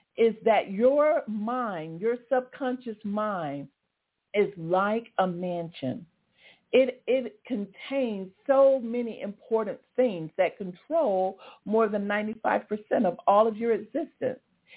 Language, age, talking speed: English, 50-69, 120 wpm